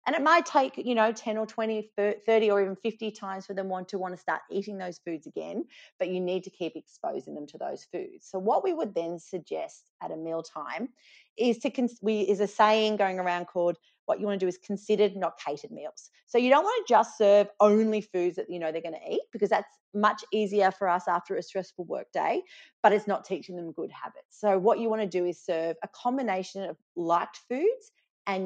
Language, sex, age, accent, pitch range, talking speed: English, female, 30-49, Australian, 175-215 Hz, 230 wpm